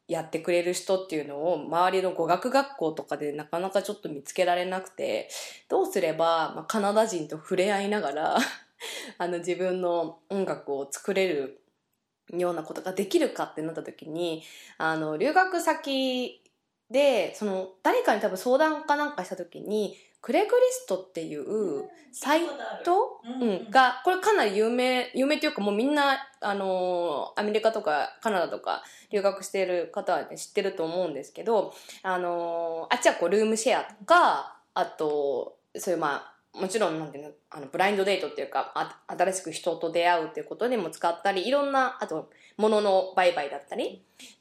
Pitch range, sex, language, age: 170-265 Hz, female, Japanese, 20-39